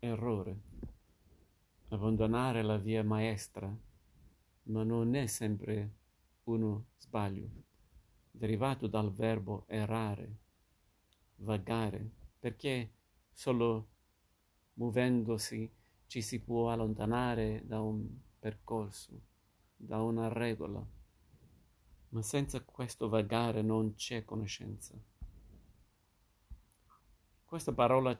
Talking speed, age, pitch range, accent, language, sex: 80 wpm, 50-69, 105-115 Hz, native, Italian, male